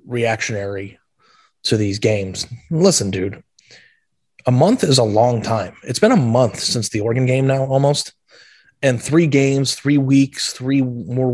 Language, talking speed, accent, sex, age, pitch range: English, 155 wpm, American, male, 30-49, 115-135 Hz